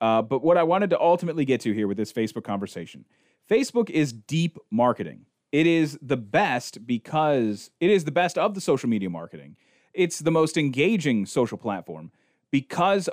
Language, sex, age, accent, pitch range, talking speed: English, male, 30-49, American, 120-170 Hz, 180 wpm